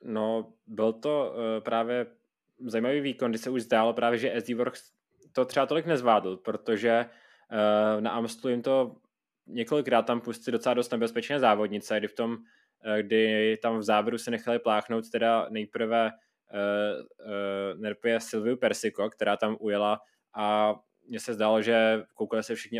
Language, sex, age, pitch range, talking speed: Czech, male, 20-39, 105-120 Hz, 160 wpm